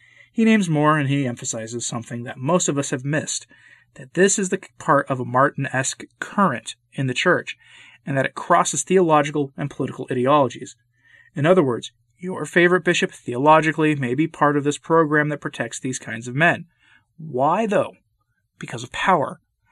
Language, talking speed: English, 175 wpm